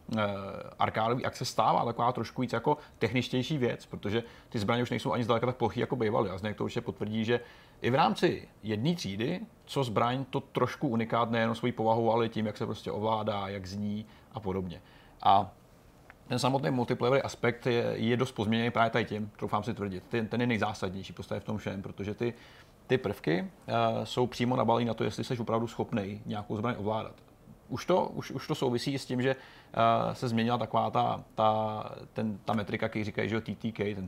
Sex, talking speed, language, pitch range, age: male, 195 wpm, Czech, 105-125 Hz, 30-49